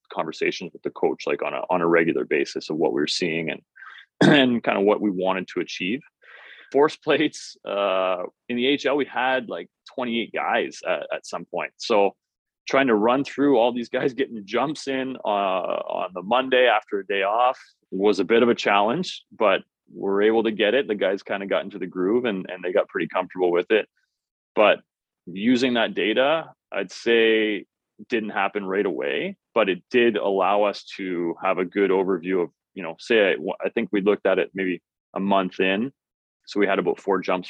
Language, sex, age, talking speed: English, male, 30-49, 205 wpm